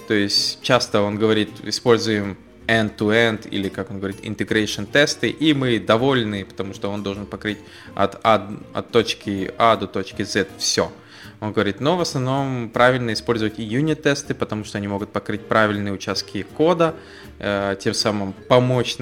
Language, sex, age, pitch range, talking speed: English, male, 20-39, 105-130 Hz, 160 wpm